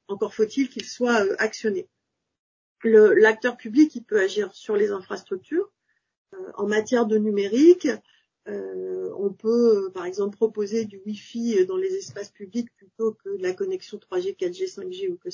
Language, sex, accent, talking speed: French, female, French, 160 wpm